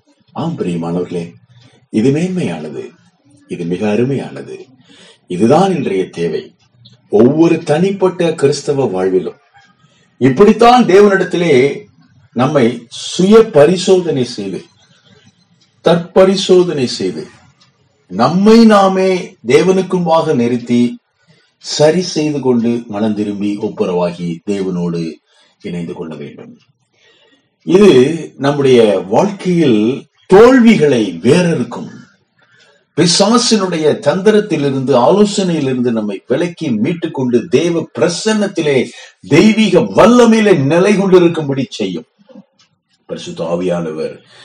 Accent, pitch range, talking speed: native, 120-190 Hz, 75 wpm